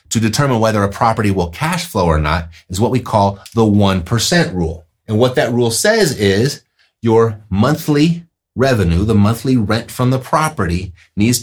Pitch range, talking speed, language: 95-130 Hz, 175 wpm, English